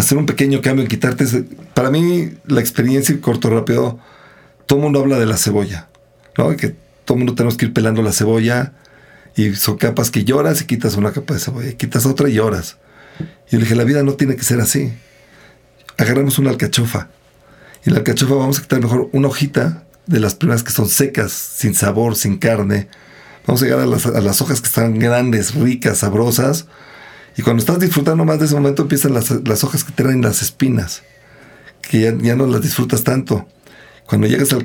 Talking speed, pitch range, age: 205 wpm, 115-140 Hz, 40-59